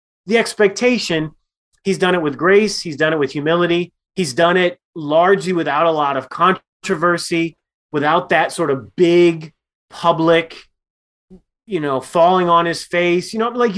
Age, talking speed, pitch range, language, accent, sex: 30-49, 155 wpm, 140-185 Hz, English, American, male